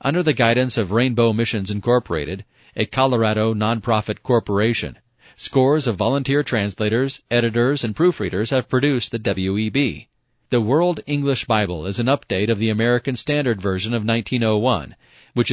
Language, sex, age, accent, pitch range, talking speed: English, male, 40-59, American, 105-130 Hz, 145 wpm